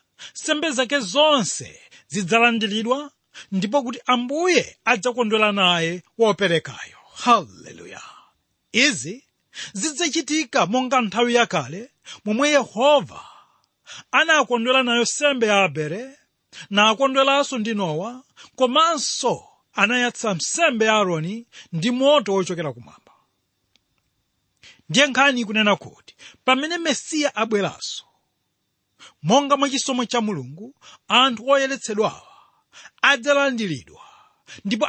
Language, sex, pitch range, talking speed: English, male, 200-275 Hz, 95 wpm